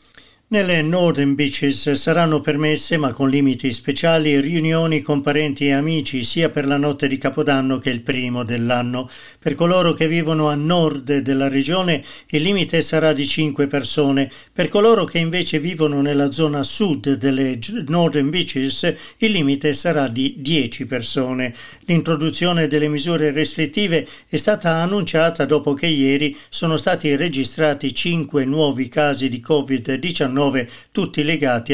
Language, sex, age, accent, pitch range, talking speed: Italian, male, 50-69, native, 135-160 Hz, 140 wpm